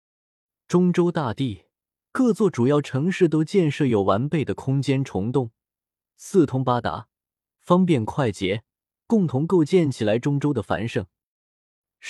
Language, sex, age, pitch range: Chinese, male, 20-39, 115-170 Hz